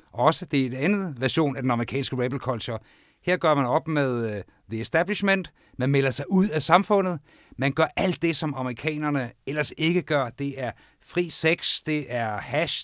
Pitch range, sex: 120-160 Hz, male